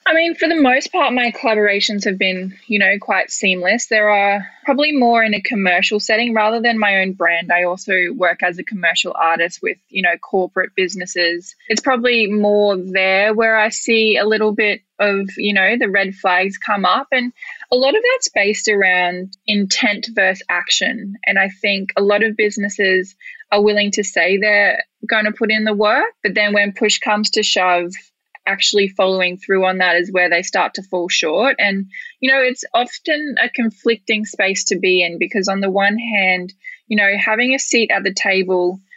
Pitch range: 185-220 Hz